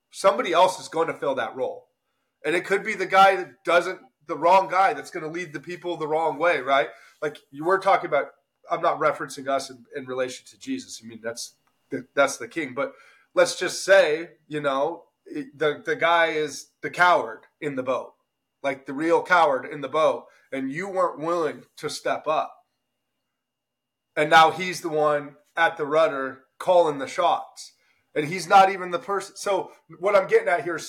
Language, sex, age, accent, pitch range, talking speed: English, male, 30-49, American, 135-185 Hz, 200 wpm